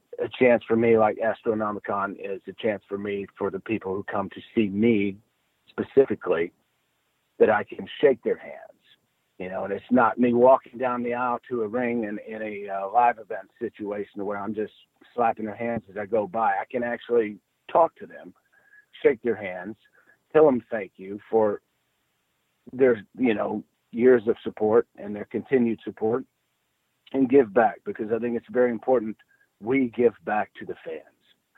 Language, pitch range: English, 105-125 Hz